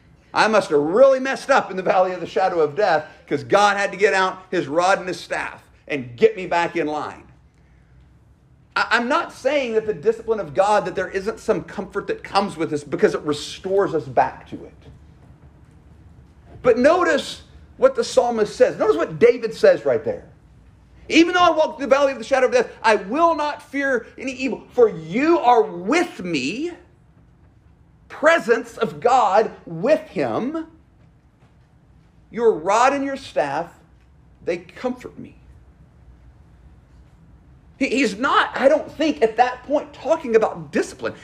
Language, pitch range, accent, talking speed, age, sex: English, 195-300 Hz, American, 165 wpm, 40-59, male